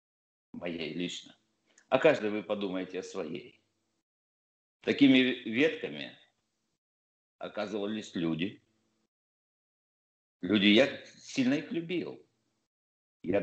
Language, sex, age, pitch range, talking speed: Russian, male, 50-69, 100-130 Hz, 80 wpm